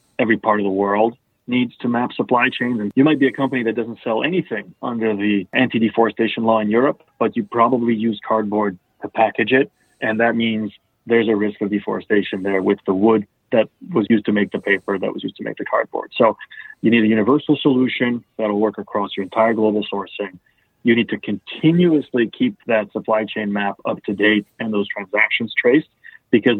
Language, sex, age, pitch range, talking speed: English, male, 30-49, 105-130 Hz, 205 wpm